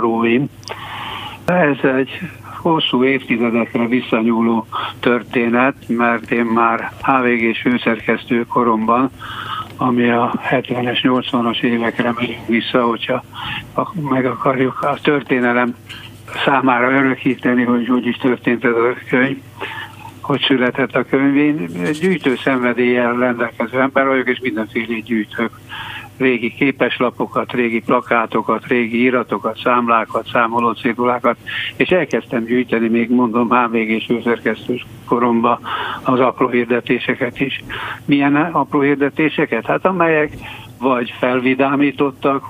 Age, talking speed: 60-79, 105 wpm